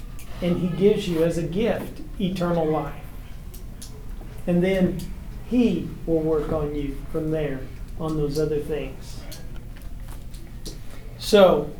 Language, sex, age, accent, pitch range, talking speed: English, male, 40-59, American, 160-190 Hz, 115 wpm